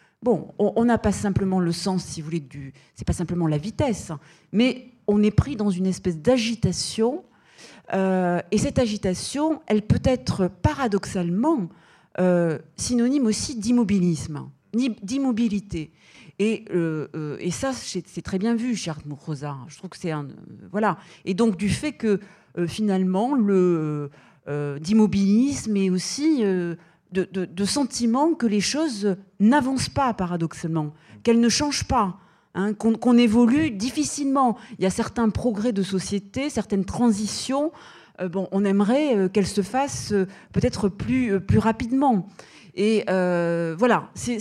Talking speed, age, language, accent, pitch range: 155 wpm, 40-59, French, French, 175-240 Hz